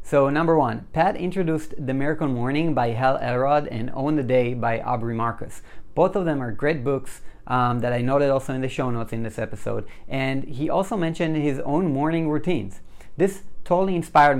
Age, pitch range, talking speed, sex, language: 30-49, 125-155 Hz, 195 wpm, male, English